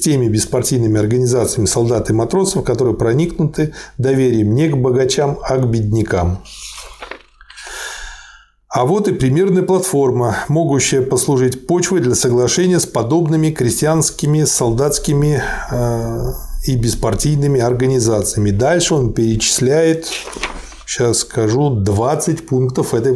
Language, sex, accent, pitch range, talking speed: Russian, male, native, 115-160 Hz, 105 wpm